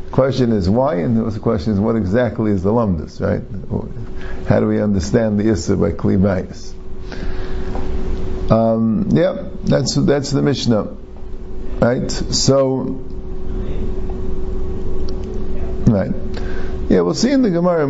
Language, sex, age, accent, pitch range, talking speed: English, male, 50-69, American, 95-115 Hz, 120 wpm